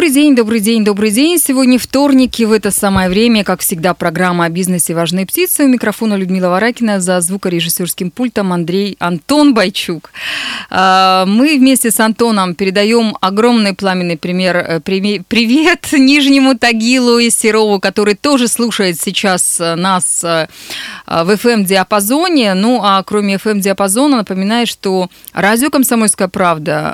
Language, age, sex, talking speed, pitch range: Russian, 20-39, female, 130 wpm, 185-245 Hz